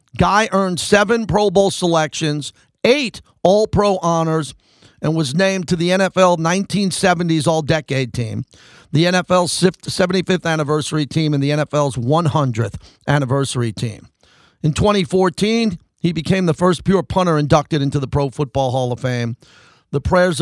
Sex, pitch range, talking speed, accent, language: male, 140-175 Hz, 140 wpm, American, English